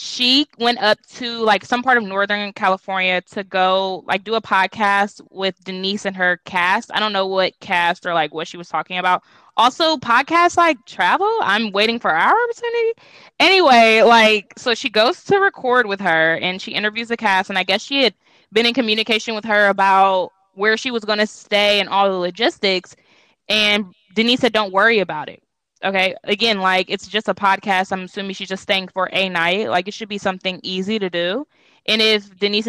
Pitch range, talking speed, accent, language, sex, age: 185-225 Hz, 200 wpm, American, English, female, 20-39